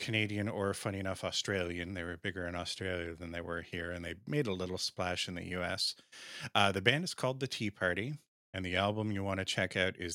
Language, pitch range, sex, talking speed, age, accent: English, 90-105 Hz, male, 235 wpm, 30-49, American